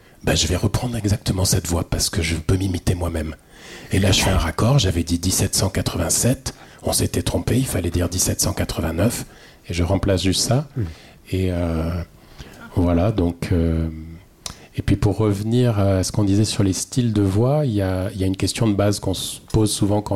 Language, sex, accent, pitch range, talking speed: French, male, French, 95-115 Hz, 195 wpm